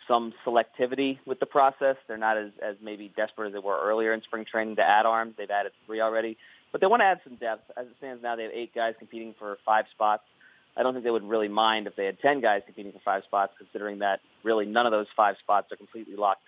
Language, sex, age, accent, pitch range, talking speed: English, male, 30-49, American, 110-130 Hz, 260 wpm